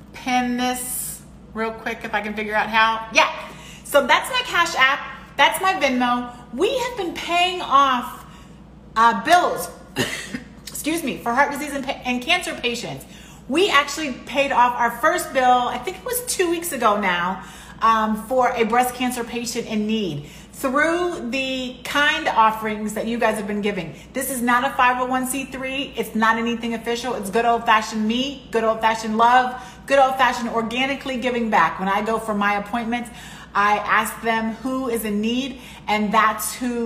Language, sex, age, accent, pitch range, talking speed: English, female, 30-49, American, 210-255 Hz, 175 wpm